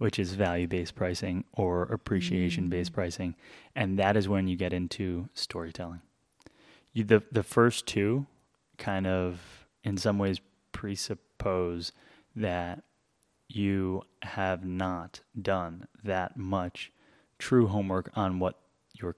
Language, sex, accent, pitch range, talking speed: English, male, American, 90-115 Hz, 115 wpm